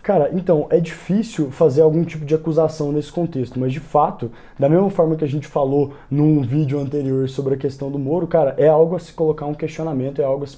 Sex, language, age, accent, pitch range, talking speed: male, Portuguese, 20-39, Brazilian, 140-165 Hz, 235 wpm